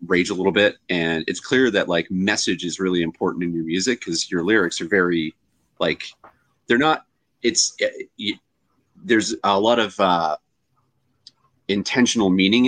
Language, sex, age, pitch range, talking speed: English, male, 30-49, 90-115 Hz, 160 wpm